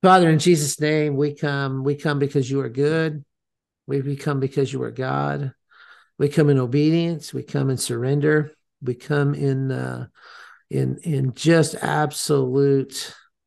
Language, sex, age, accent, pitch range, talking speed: English, male, 50-69, American, 130-150 Hz, 150 wpm